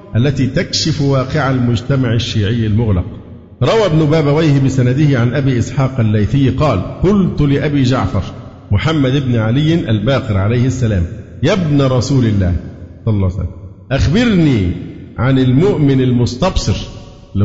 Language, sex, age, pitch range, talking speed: Arabic, male, 50-69, 110-150 Hz, 125 wpm